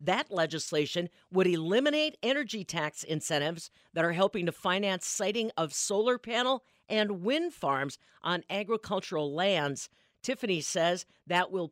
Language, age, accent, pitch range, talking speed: English, 50-69, American, 170-220 Hz, 135 wpm